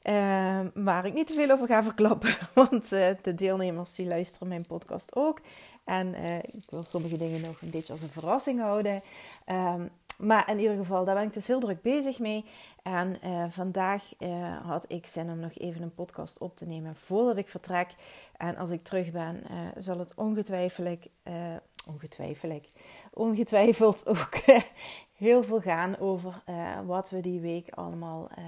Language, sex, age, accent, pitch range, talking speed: Dutch, female, 30-49, Dutch, 175-210 Hz, 175 wpm